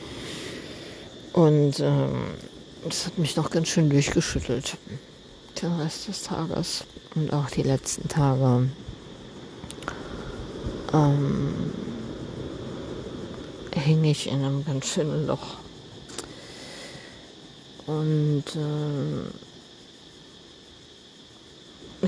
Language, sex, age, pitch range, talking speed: German, female, 50-69, 155-200 Hz, 75 wpm